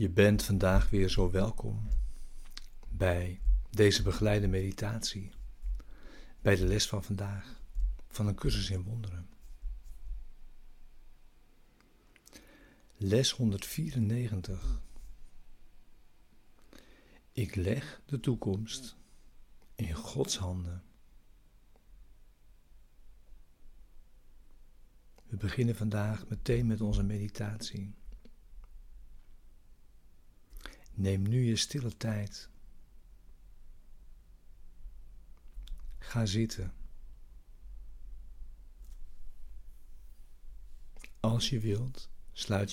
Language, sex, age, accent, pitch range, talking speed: Dutch, male, 60-79, Dutch, 90-110 Hz, 65 wpm